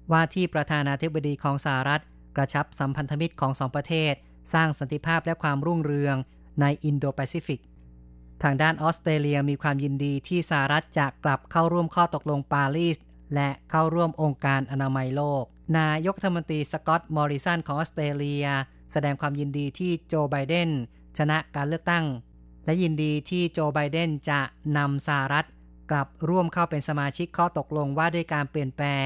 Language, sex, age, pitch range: Thai, female, 20-39, 140-160 Hz